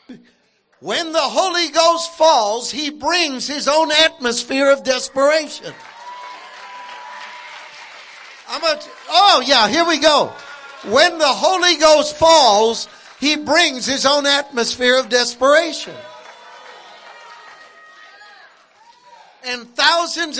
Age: 60-79